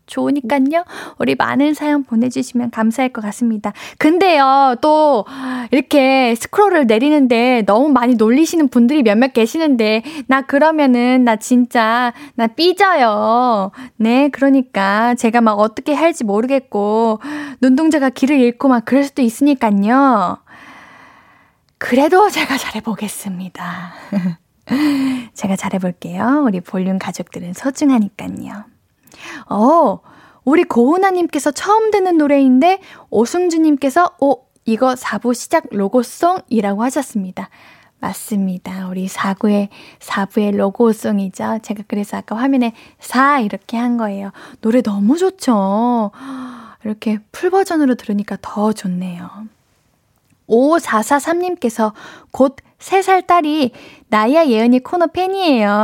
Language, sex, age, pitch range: Korean, female, 10-29, 220-310 Hz